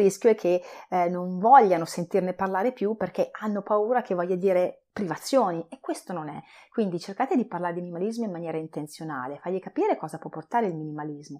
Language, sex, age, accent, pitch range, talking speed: Italian, female, 30-49, native, 165-220 Hz, 190 wpm